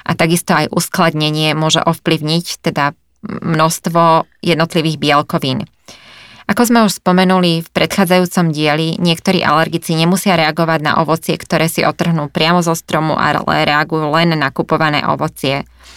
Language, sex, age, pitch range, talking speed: Slovak, female, 20-39, 155-175 Hz, 130 wpm